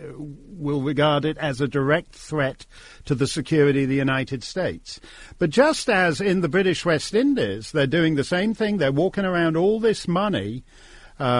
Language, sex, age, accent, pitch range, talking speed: English, male, 50-69, British, 135-190 Hz, 180 wpm